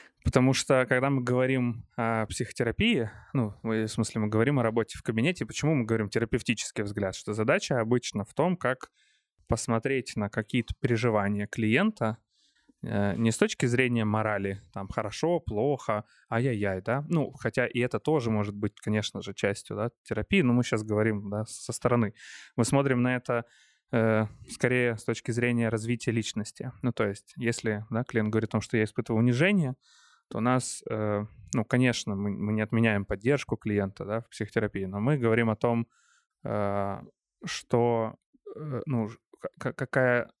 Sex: male